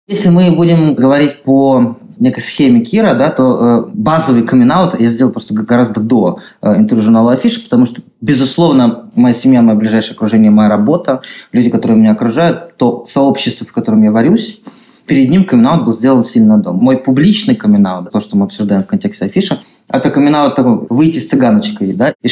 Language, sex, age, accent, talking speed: Russian, male, 20-39, native, 180 wpm